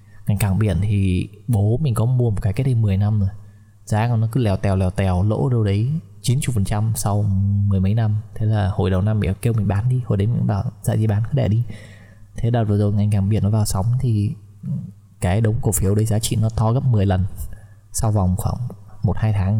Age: 20-39